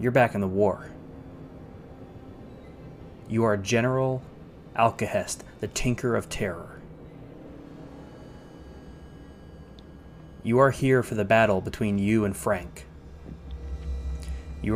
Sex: male